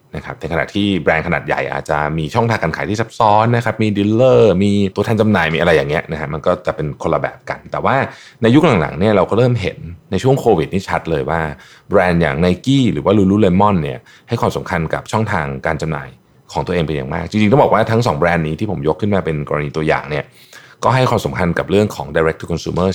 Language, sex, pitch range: Thai, male, 80-105 Hz